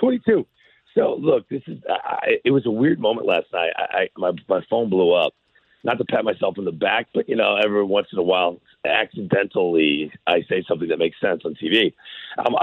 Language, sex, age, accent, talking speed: English, male, 50-69, American, 215 wpm